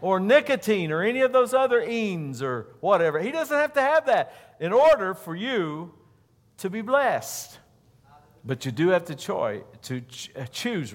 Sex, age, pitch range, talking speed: male, 50-69, 110-150 Hz, 185 wpm